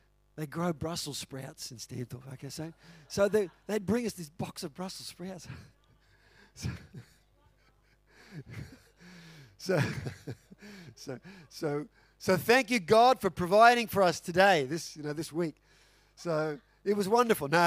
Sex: male